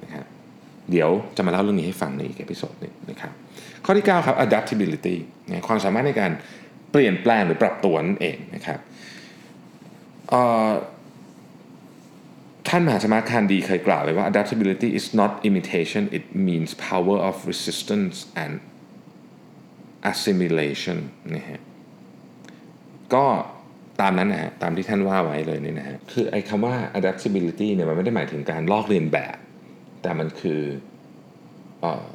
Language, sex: Thai, male